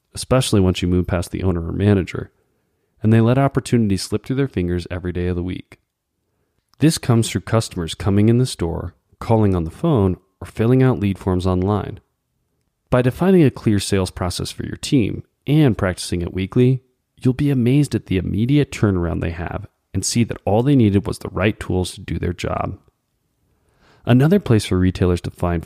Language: English